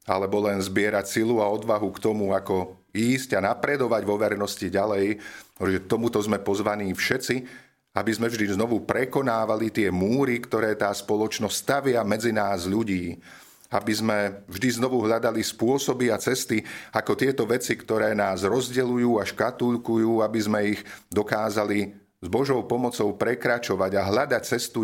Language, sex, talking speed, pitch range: Slovak, male, 145 wpm, 95-110 Hz